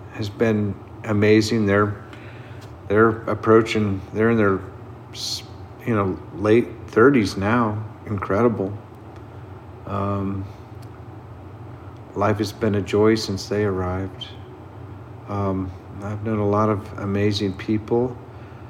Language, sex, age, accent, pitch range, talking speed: English, male, 50-69, American, 100-115 Hz, 105 wpm